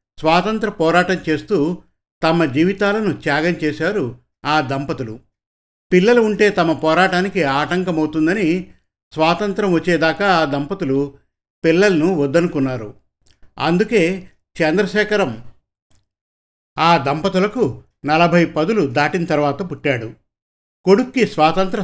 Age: 50-69